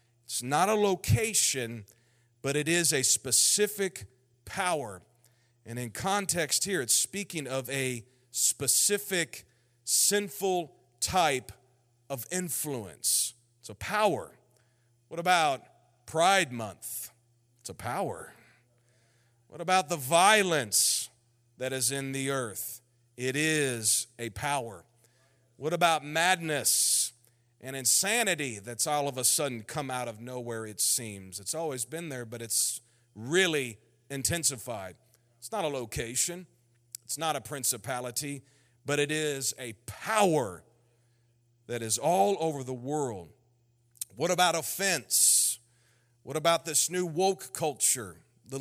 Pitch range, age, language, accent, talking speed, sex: 120-155 Hz, 40-59, English, American, 120 wpm, male